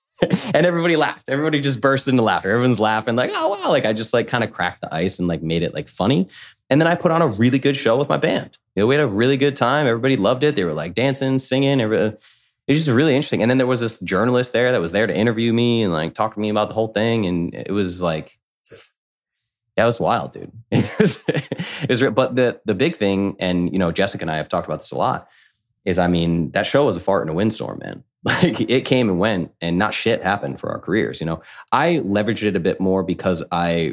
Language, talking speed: English, 260 wpm